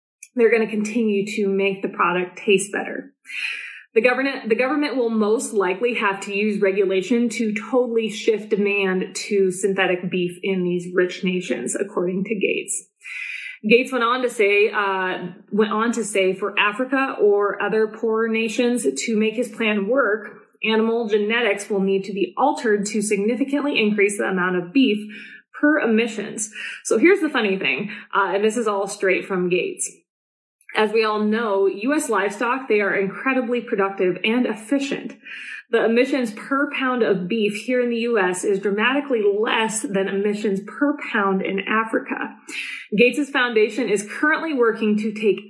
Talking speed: 160 wpm